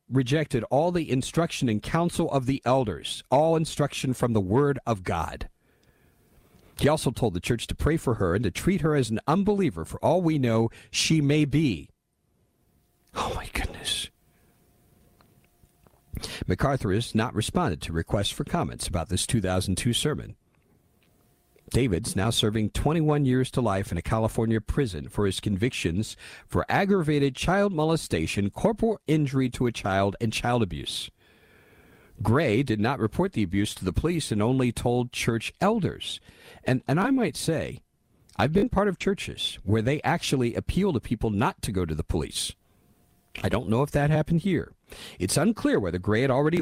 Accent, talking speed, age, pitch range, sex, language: American, 165 wpm, 50-69, 105-145 Hz, male, English